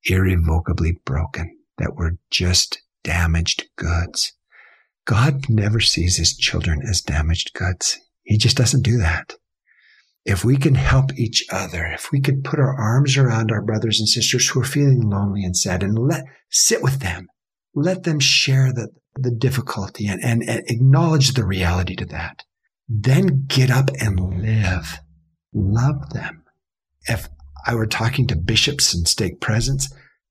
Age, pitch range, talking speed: 50-69, 90-135 Hz, 155 wpm